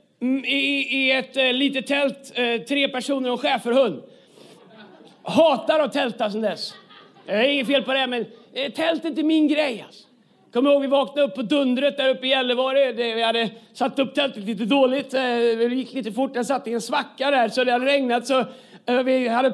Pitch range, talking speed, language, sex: 245-295 Hz, 210 wpm, Swedish, male